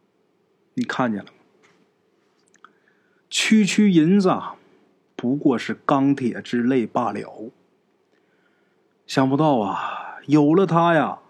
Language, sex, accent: Chinese, male, native